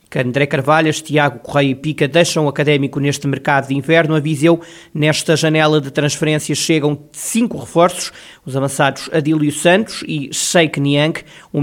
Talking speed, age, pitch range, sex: 150 wpm, 20-39, 140-165 Hz, male